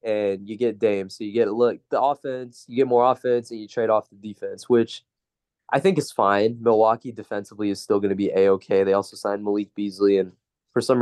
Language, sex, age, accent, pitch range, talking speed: English, male, 20-39, American, 105-130 Hz, 225 wpm